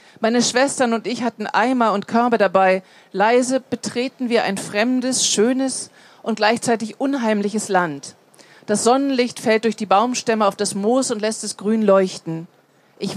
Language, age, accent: German, 40-59, German